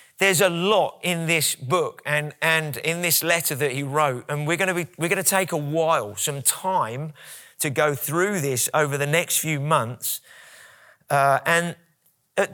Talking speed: 185 wpm